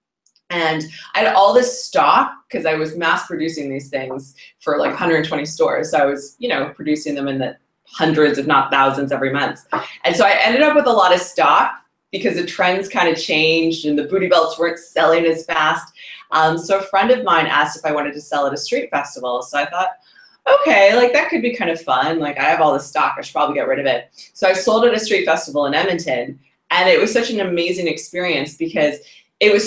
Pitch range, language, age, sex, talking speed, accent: 150-195 Hz, English, 20-39, female, 235 wpm, American